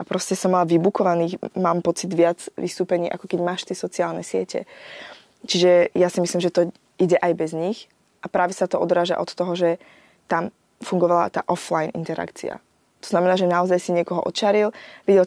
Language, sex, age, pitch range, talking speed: Slovak, female, 20-39, 170-185 Hz, 180 wpm